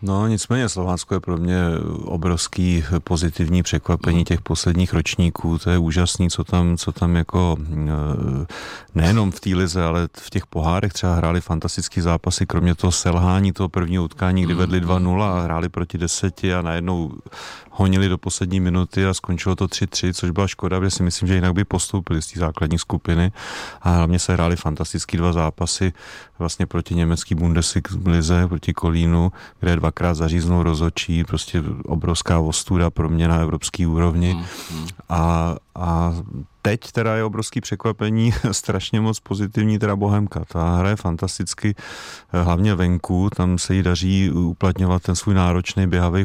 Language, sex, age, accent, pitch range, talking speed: Czech, male, 30-49, native, 85-95 Hz, 155 wpm